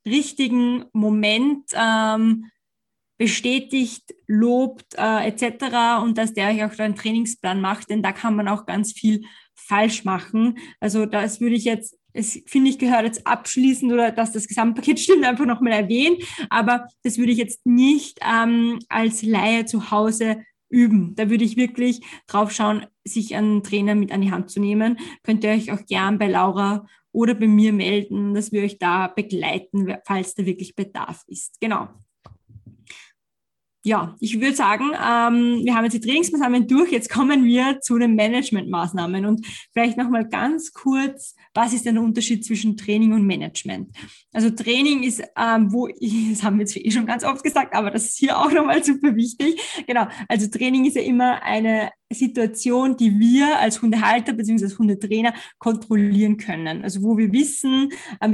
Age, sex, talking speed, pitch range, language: 20-39, female, 175 wpm, 210-245 Hz, German